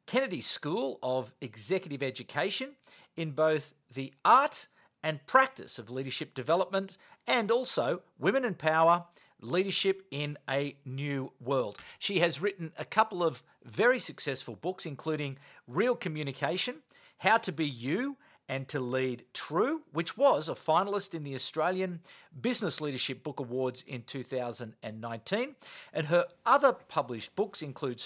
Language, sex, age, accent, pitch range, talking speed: English, male, 50-69, Australian, 135-200 Hz, 135 wpm